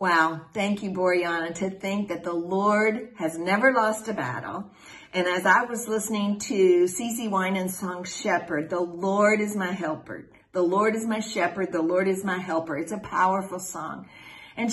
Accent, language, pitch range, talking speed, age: American, English, 180-235 Hz, 180 wpm, 50-69